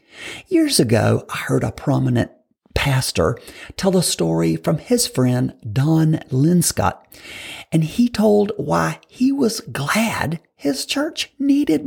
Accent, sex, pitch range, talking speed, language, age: American, male, 130-190 Hz, 125 wpm, English, 50-69